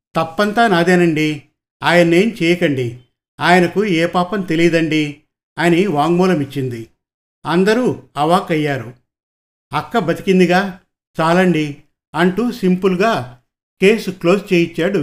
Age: 50-69